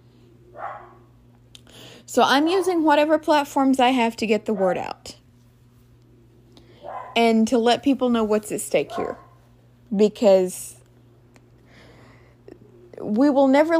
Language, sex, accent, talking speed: English, female, American, 110 wpm